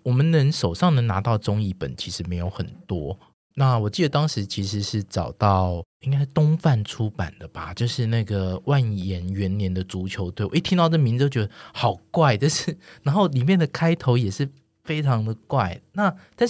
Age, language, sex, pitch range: 20-39, Chinese, male, 95-130 Hz